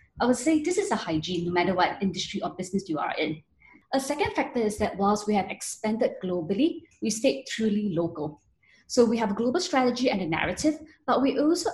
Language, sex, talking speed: English, female, 215 wpm